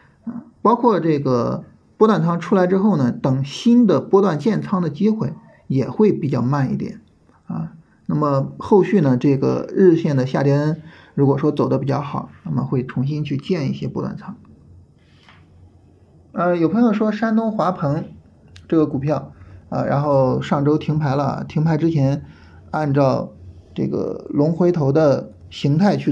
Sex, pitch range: male, 130-180 Hz